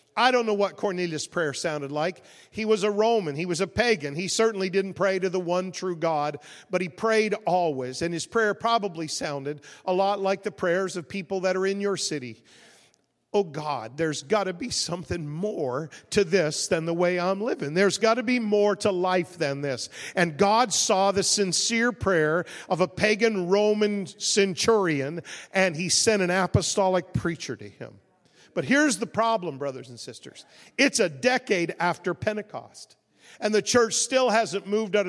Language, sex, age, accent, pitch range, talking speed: English, male, 50-69, American, 175-215 Hz, 185 wpm